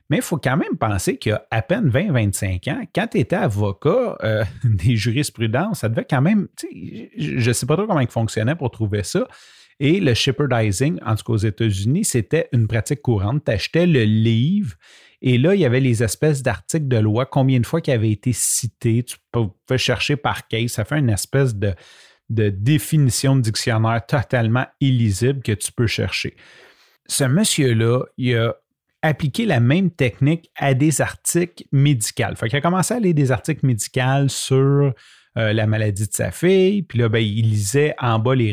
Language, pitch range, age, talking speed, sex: French, 115-145 Hz, 30-49, 195 wpm, male